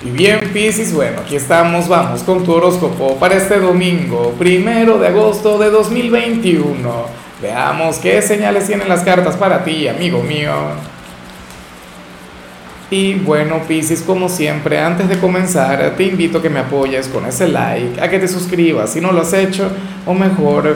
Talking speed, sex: 160 wpm, male